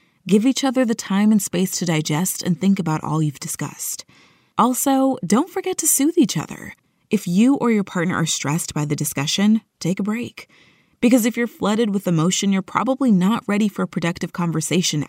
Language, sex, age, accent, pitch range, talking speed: English, female, 20-39, American, 165-215 Hz, 195 wpm